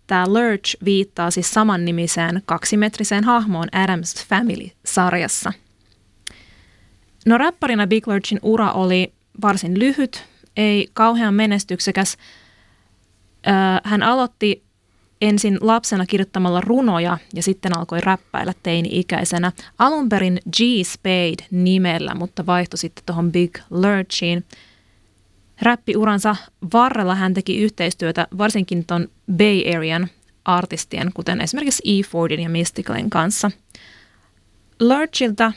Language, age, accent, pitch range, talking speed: Finnish, 20-39, native, 170-210 Hz, 100 wpm